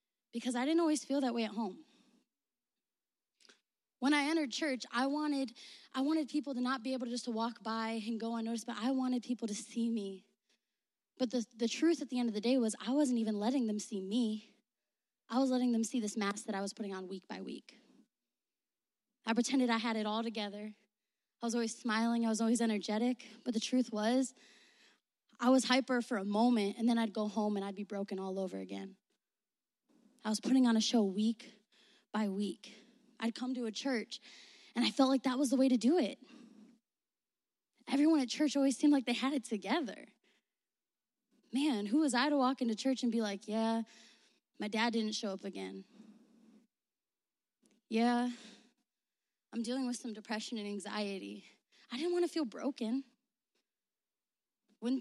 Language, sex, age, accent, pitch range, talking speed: English, female, 20-39, American, 220-255 Hz, 190 wpm